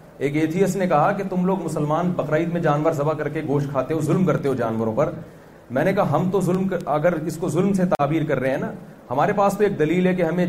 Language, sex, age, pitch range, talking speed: Urdu, male, 40-59, 155-200 Hz, 265 wpm